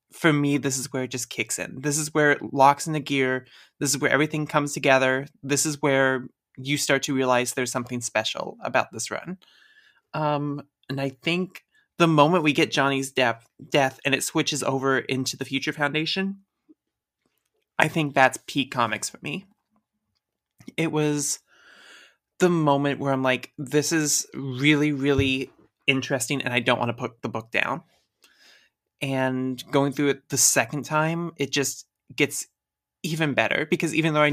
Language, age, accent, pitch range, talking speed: English, 20-39, American, 130-150 Hz, 175 wpm